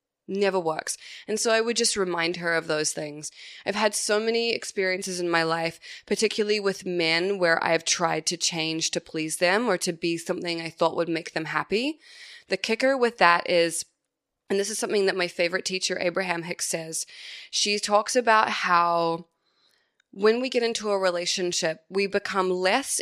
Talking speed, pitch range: 185 wpm, 170-210 Hz